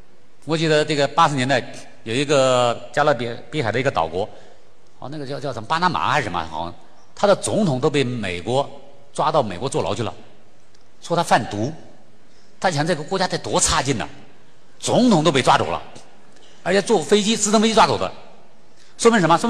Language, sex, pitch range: Chinese, male, 120-170 Hz